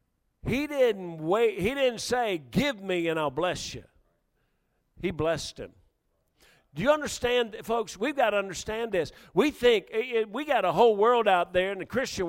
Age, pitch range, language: 50-69, 205-285 Hz, English